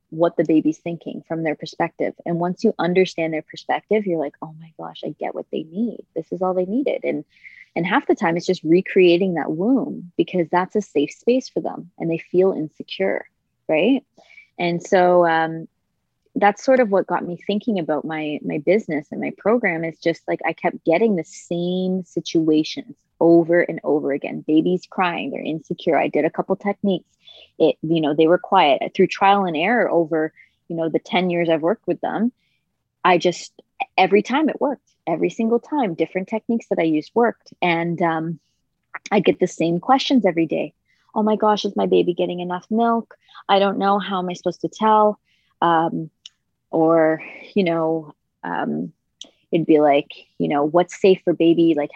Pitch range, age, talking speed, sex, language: 160-200 Hz, 20-39, 190 wpm, female, English